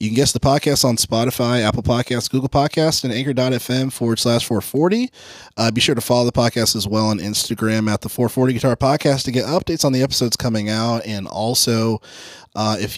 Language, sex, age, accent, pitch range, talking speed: English, male, 20-39, American, 110-135 Hz, 205 wpm